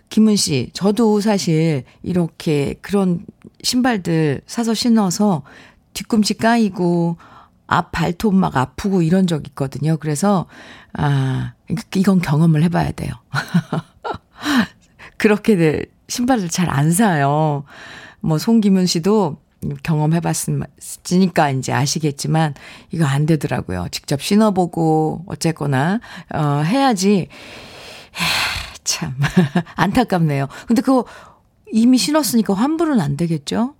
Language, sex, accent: Korean, female, native